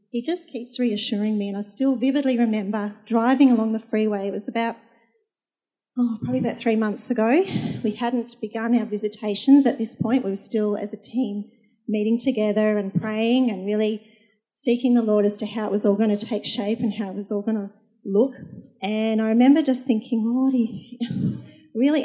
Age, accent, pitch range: 40-59, Australian, 215-255 Hz